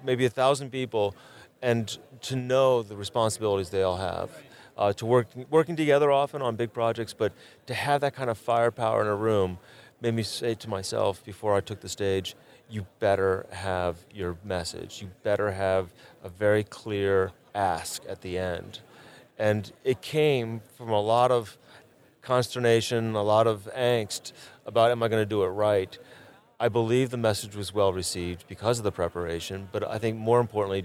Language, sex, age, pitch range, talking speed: English, male, 30-49, 100-120 Hz, 180 wpm